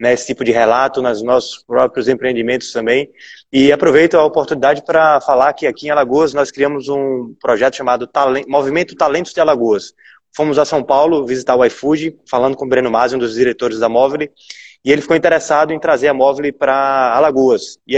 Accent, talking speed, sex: Brazilian, 195 wpm, male